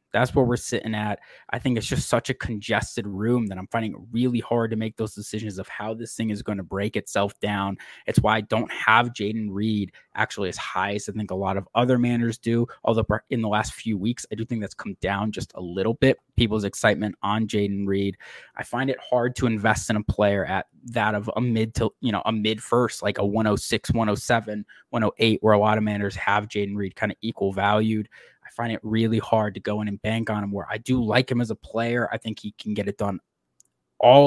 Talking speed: 240 wpm